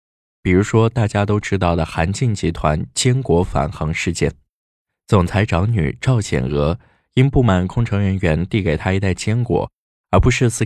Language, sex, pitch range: Chinese, male, 80-115 Hz